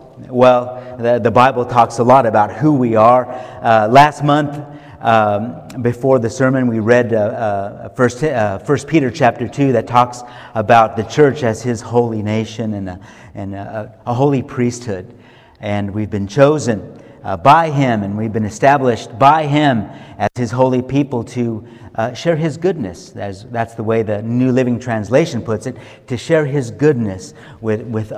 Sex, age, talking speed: male, 50-69, 175 wpm